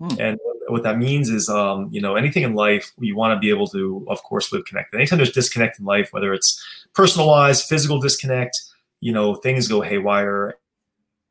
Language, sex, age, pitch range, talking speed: English, male, 30-49, 105-130 Hz, 190 wpm